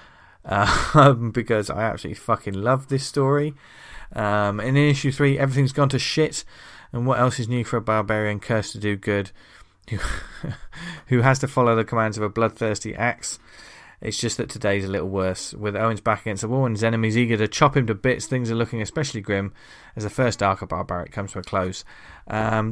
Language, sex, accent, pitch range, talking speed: English, male, British, 100-125 Hz, 200 wpm